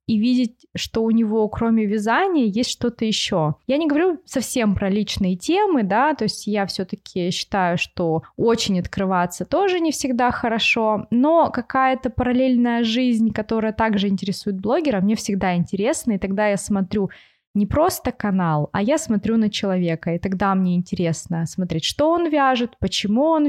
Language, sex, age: Russian, female, 20-39